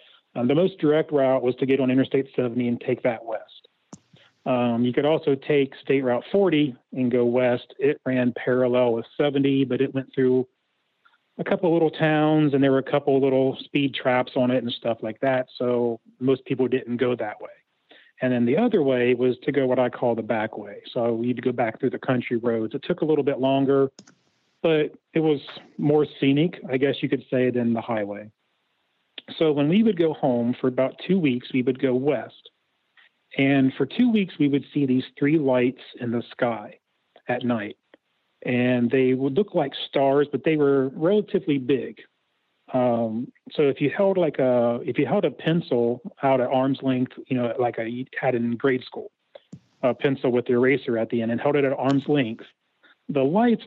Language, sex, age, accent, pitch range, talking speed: English, male, 40-59, American, 125-145 Hz, 205 wpm